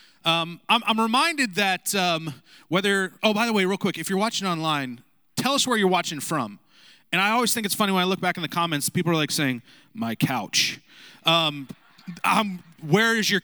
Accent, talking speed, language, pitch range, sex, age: American, 210 wpm, English, 145-190 Hz, male, 30-49